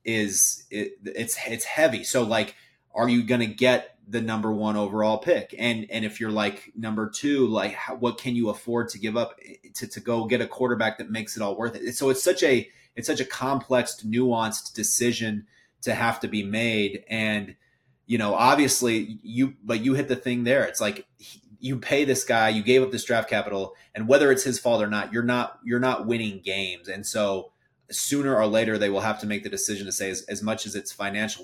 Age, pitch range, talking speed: 30-49, 105-120 Hz, 220 wpm